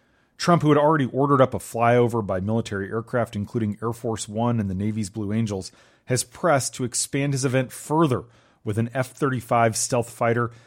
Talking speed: 180 wpm